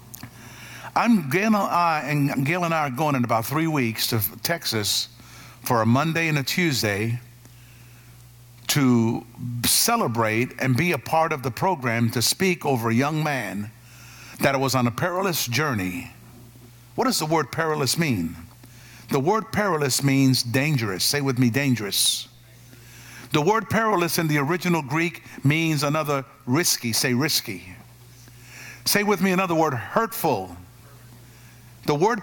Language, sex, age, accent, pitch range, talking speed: English, male, 50-69, American, 120-205 Hz, 140 wpm